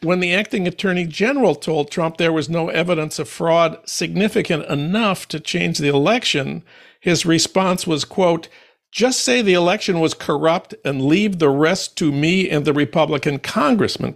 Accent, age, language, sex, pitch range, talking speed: American, 60-79, English, male, 150-195 Hz, 165 wpm